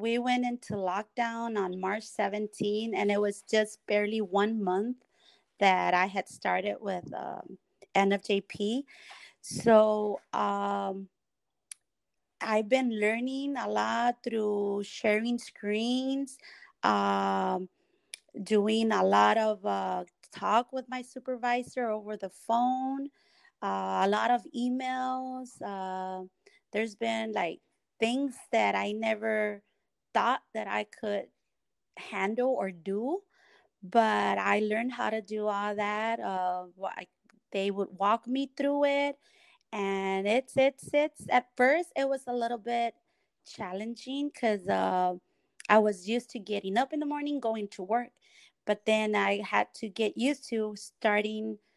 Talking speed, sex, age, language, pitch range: 135 wpm, female, 30-49, English, 205-255 Hz